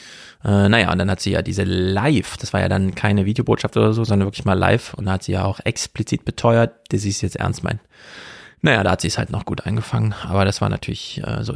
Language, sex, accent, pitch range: German, male, German, 100-120 Hz